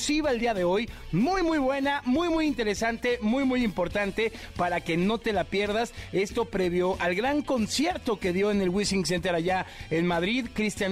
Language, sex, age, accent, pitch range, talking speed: Spanish, male, 40-59, Mexican, 195-270 Hz, 190 wpm